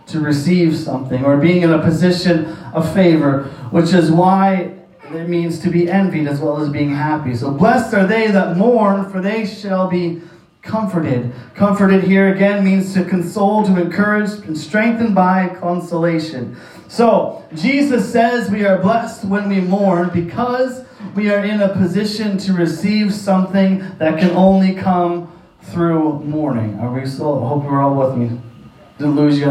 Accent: American